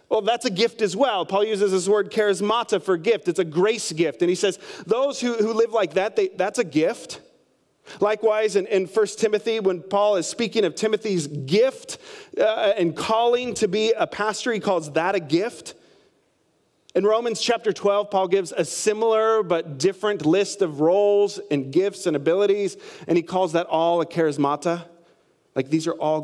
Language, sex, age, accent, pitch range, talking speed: English, male, 30-49, American, 165-225 Hz, 185 wpm